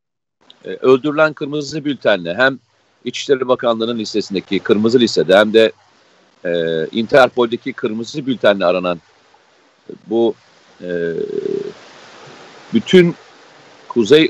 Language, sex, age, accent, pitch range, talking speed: Turkish, male, 50-69, native, 115-170 Hz, 90 wpm